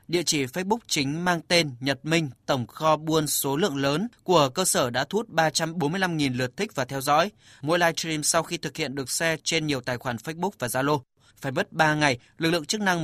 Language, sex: Vietnamese, male